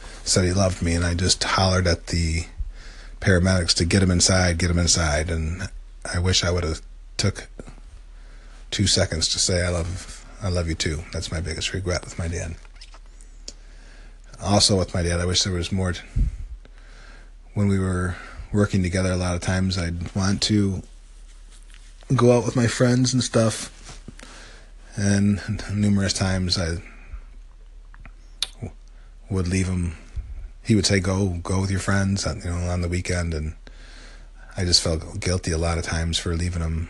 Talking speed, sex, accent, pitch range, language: 165 wpm, male, American, 80-95 Hz, English